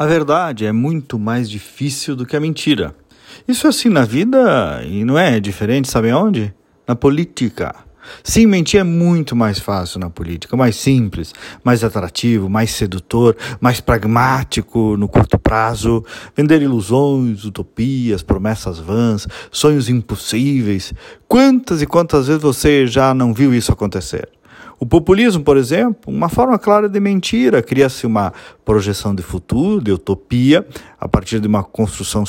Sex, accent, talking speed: male, Brazilian, 150 wpm